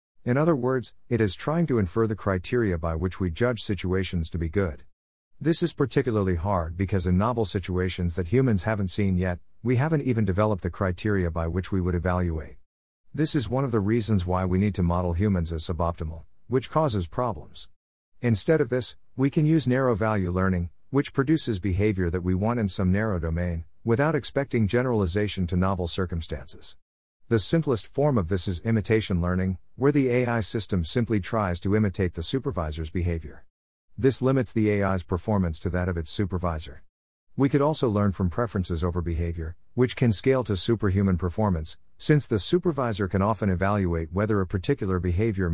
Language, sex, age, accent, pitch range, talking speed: English, male, 50-69, American, 90-115 Hz, 180 wpm